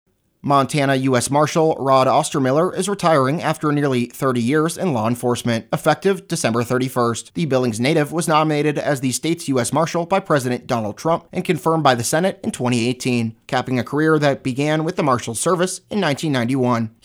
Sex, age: male, 30-49